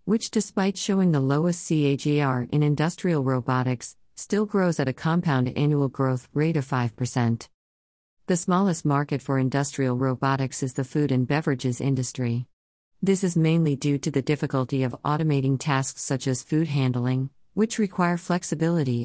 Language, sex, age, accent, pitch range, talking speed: English, female, 50-69, American, 130-160 Hz, 150 wpm